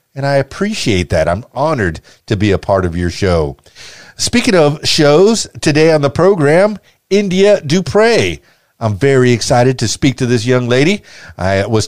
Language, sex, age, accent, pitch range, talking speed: English, male, 50-69, American, 110-150 Hz, 165 wpm